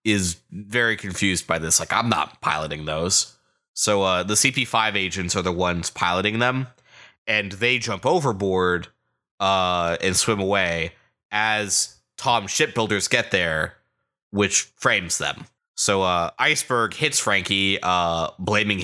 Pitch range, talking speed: 95-120 Hz, 140 wpm